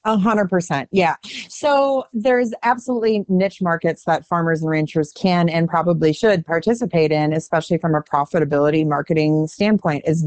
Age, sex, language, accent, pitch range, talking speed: 30-49, female, English, American, 165-205 Hz, 150 wpm